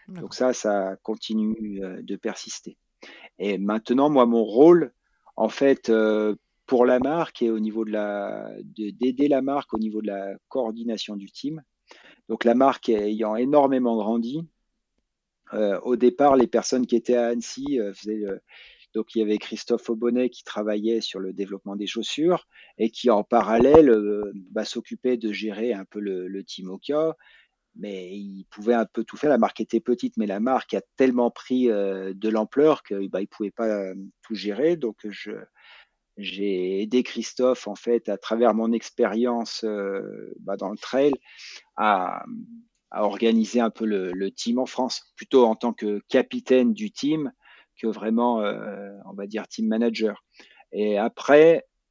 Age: 40-59